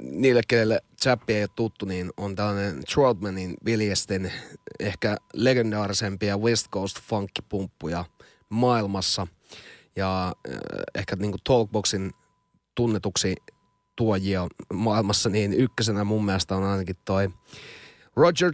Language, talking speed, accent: Finnish, 105 wpm, native